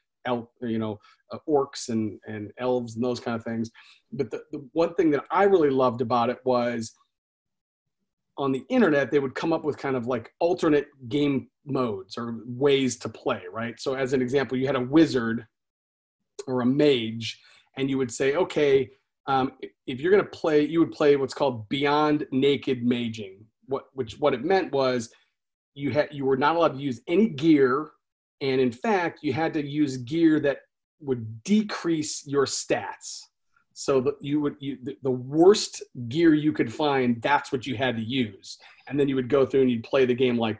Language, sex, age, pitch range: English, male, 30-49, 125-145 Hz